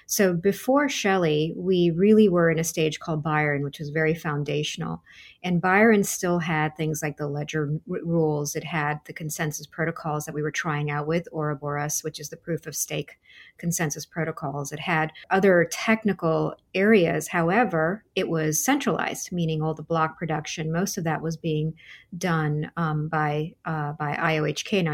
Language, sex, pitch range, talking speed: English, female, 155-185 Hz, 170 wpm